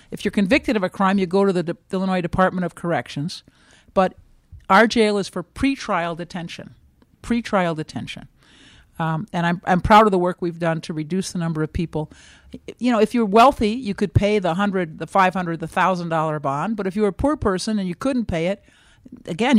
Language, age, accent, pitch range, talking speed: English, 50-69, American, 165-205 Hz, 210 wpm